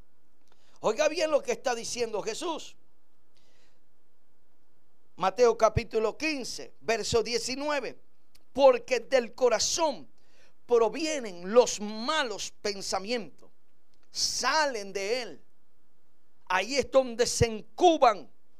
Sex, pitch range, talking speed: male, 220-265 Hz, 85 wpm